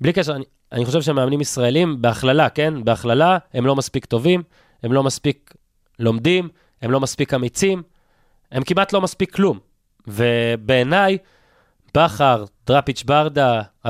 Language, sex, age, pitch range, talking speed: Hebrew, male, 20-39, 125-165 Hz, 135 wpm